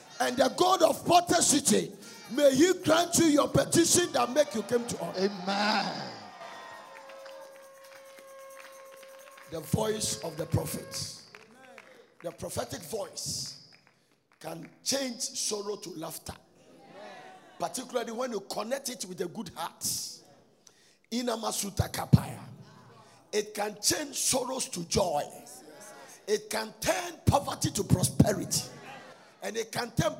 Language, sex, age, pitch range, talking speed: English, male, 50-69, 165-270 Hz, 115 wpm